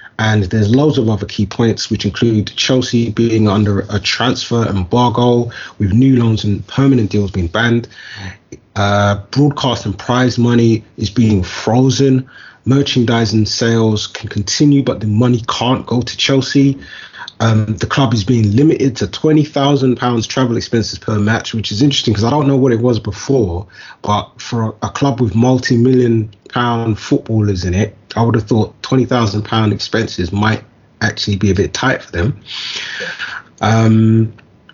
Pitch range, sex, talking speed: 105-130 Hz, male, 155 wpm